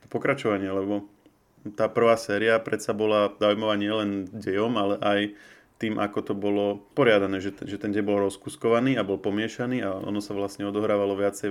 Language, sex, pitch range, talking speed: Slovak, male, 100-120 Hz, 165 wpm